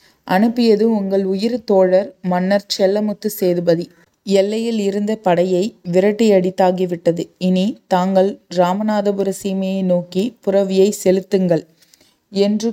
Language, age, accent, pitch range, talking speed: Tamil, 30-49, native, 180-205 Hz, 90 wpm